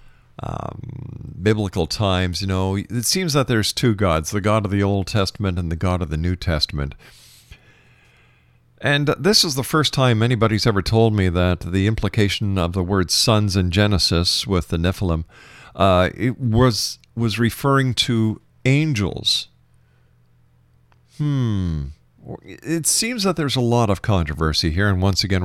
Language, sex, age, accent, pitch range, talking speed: English, male, 50-69, American, 90-120 Hz, 155 wpm